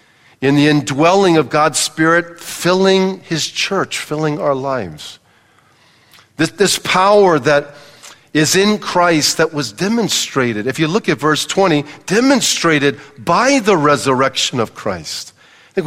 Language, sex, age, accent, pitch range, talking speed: English, male, 50-69, American, 130-165 Hz, 135 wpm